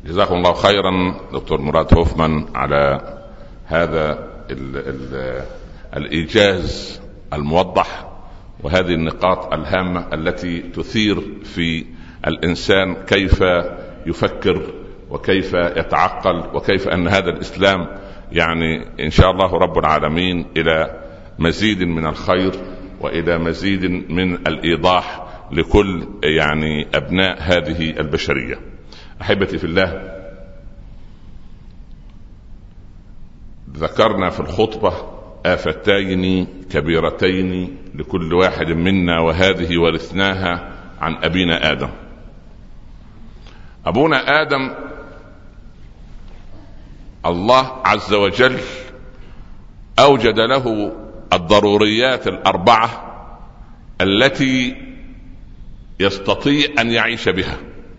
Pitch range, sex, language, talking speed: 80-100 Hz, male, Arabic, 75 wpm